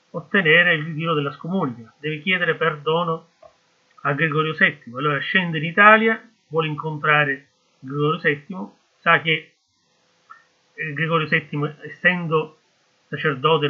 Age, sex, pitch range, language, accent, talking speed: 30-49, male, 145-170 Hz, Italian, native, 110 wpm